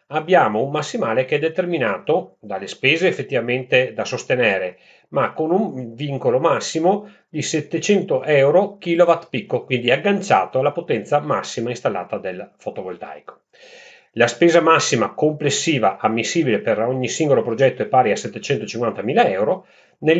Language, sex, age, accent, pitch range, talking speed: Italian, male, 40-59, native, 120-180 Hz, 130 wpm